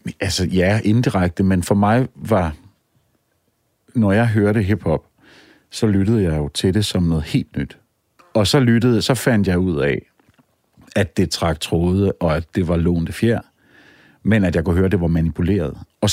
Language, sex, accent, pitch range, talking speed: Danish, male, native, 85-105 Hz, 180 wpm